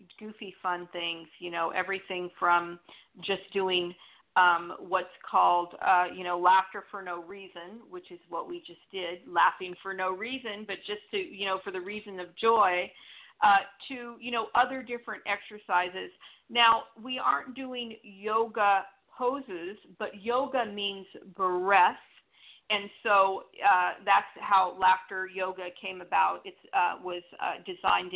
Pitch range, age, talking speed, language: 180-225 Hz, 40-59, 145 wpm, English